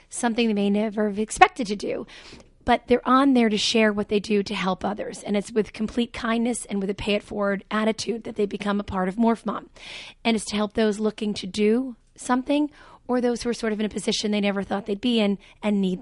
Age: 30-49